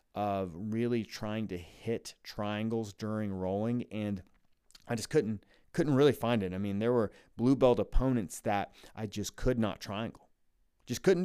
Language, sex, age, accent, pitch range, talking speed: English, male, 30-49, American, 100-125 Hz, 165 wpm